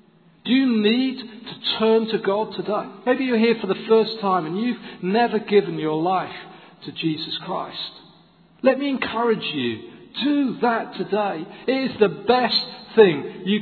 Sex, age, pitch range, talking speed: male, 50-69, 195-260 Hz, 165 wpm